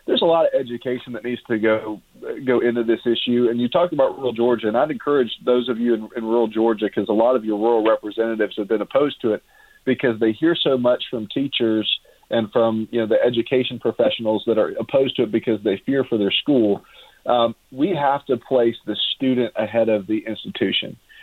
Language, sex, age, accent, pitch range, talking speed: English, male, 40-59, American, 110-120 Hz, 220 wpm